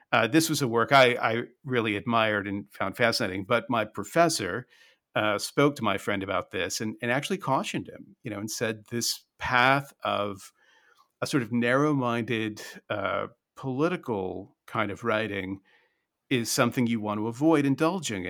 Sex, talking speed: male, 160 wpm